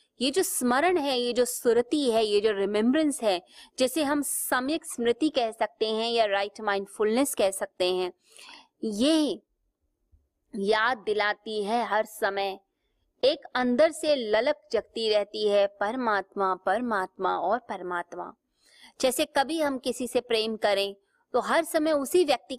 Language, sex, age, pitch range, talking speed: Hindi, female, 20-39, 205-275 Hz, 145 wpm